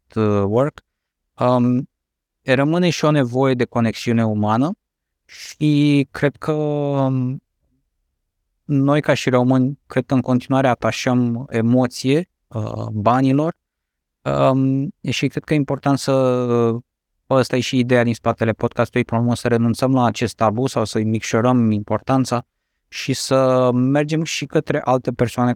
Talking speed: 135 wpm